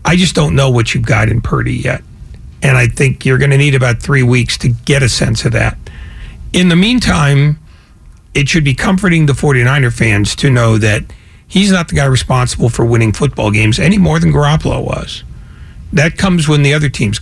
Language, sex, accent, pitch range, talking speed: English, male, American, 120-155 Hz, 205 wpm